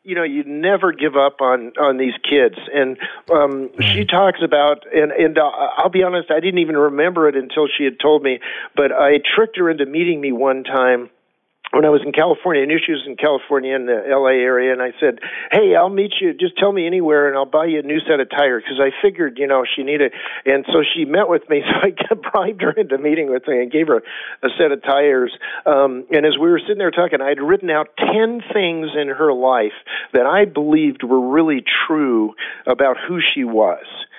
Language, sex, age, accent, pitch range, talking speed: English, male, 50-69, American, 135-175 Hz, 230 wpm